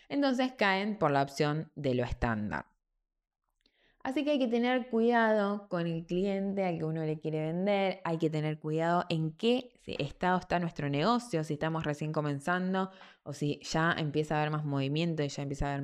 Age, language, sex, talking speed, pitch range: 20-39, Spanish, female, 195 wpm, 155-205 Hz